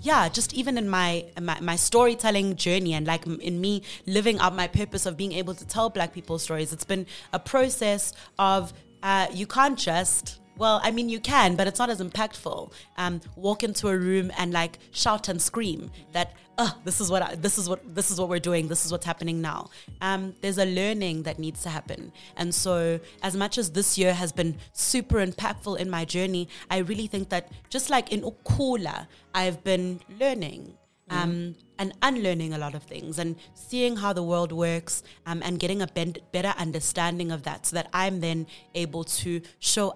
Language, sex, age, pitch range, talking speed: English, female, 20-39, 170-200 Hz, 200 wpm